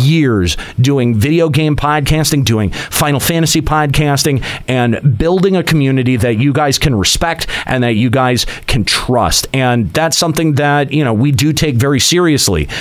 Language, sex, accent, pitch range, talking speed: English, male, American, 110-145 Hz, 165 wpm